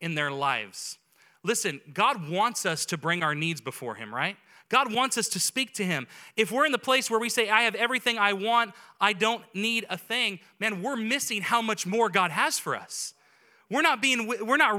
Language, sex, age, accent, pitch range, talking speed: English, male, 30-49, American, 180-240 Hz, 220 wpm